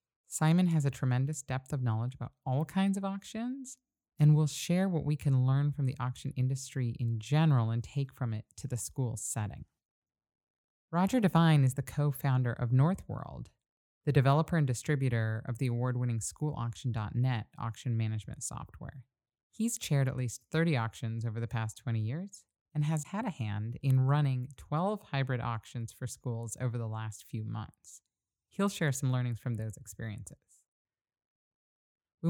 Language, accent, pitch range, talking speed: English, American, 120-150 Hz, 160 wpm